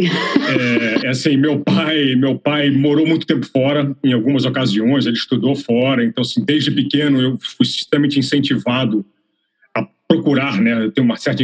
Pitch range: 130-160 Hz